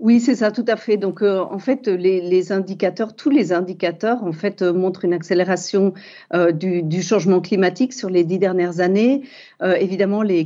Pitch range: 185-225 Hz